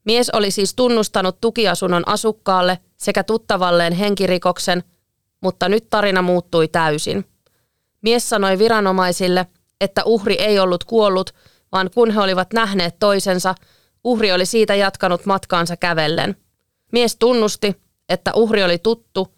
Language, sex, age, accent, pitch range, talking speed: Finnish, female, 30-49, native, 180-215 Hz, 125 wpm